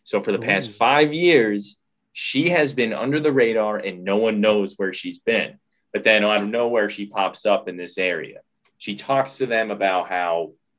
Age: 20-39